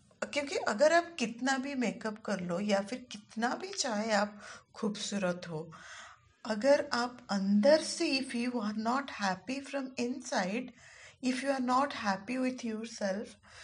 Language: Hindi